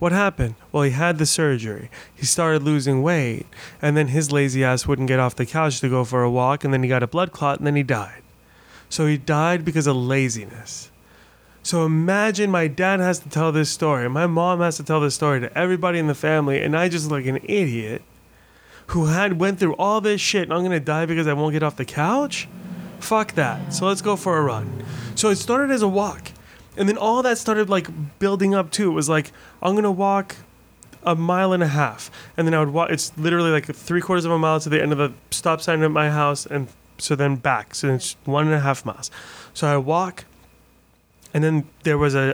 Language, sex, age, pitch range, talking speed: English, male, 20-39, 135-170 Hz, 235 wpm